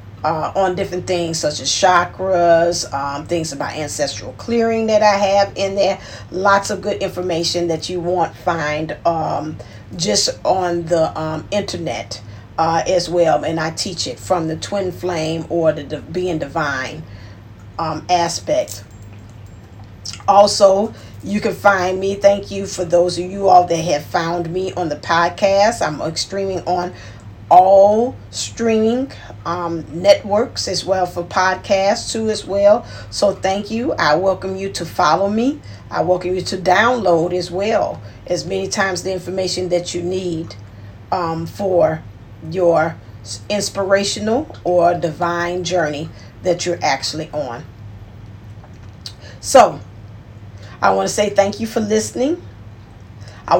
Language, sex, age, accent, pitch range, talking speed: English, female, 50-69, American, 140-195 Hz, 140 wpm